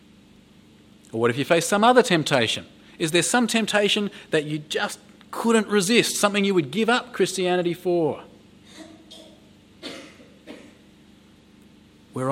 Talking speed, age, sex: 120 wpm, 30-49, male